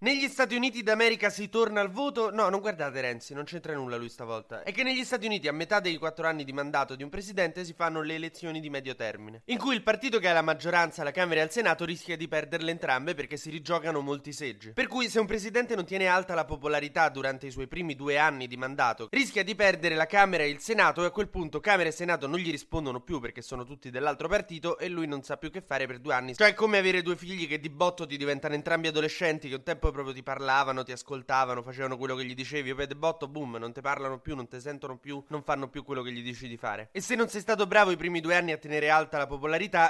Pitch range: 140-185 Hz